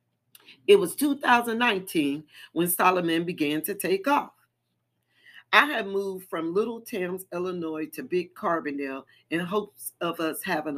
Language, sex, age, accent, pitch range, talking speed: English, female, 40-59, American, 165-230 Hz, 135 wpm